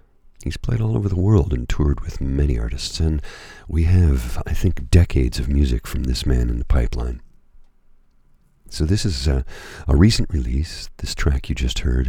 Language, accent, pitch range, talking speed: English, American, 65-90 Hz, 185 wpm